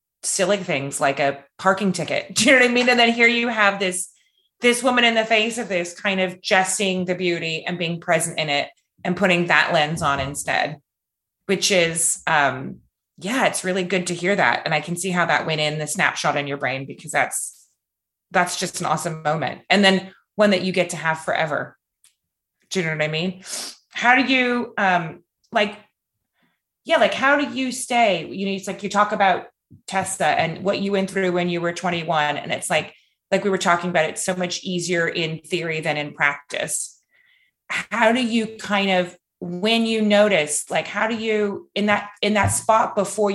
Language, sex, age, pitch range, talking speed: English, female, 30-49, 170-215 Hz, 205 wpm